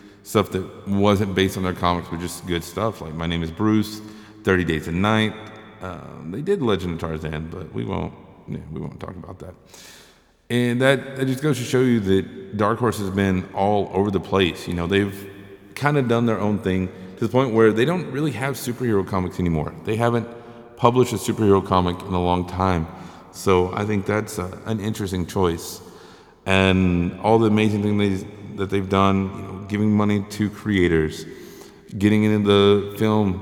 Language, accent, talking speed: English, American, 195 wpm